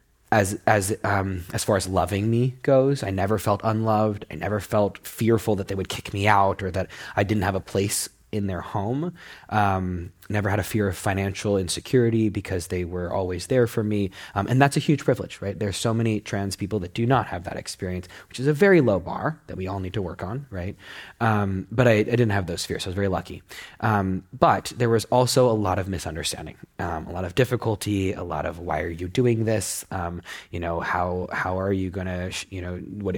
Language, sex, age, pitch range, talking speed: English, male, 20-39, 95-115 Hz, 230 wpm